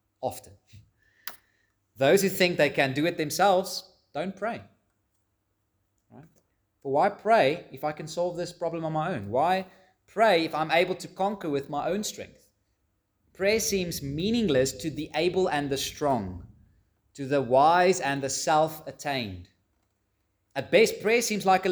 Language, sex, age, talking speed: English, male, 30-49, 150 wpm